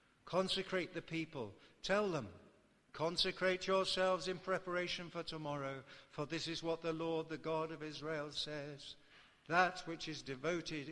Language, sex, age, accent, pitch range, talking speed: English, male, 60-79, British, 115-160 Hz, 145 wpm